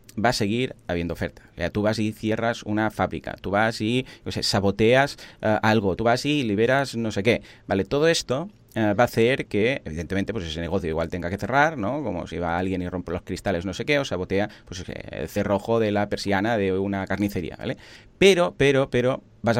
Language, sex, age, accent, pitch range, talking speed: Spanish, male, 30-49, Spanish, 100-120 Hz, 220 wpm